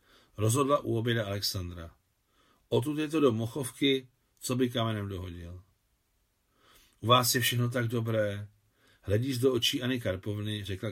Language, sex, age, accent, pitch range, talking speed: Czech, male, 50-69, native, 100-140 Hz, 135 wpm